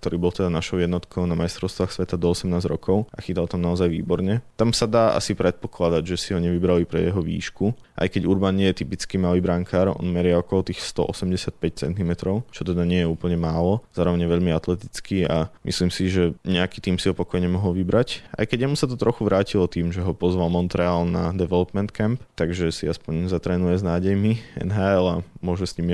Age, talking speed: 20-39, 205 wpm